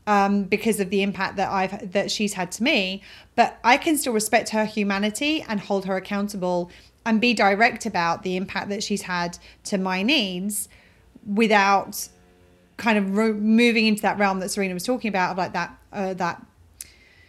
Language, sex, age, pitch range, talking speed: English, female, 30-49, 195-225 Hz, 185 wpm